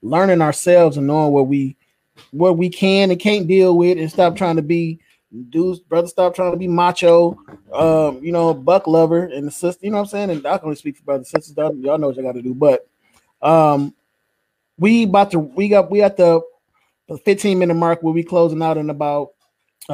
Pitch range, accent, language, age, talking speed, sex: 140-170 Hz, American, English, 20-39, 215 wpm, male